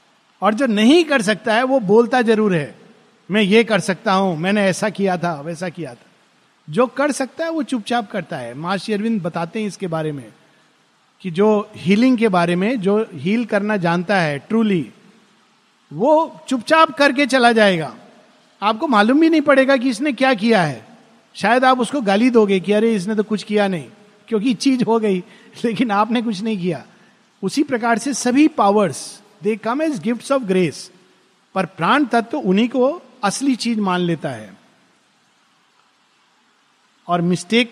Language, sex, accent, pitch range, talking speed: Hindi, male, native, 195-245 Hz, 170 wpm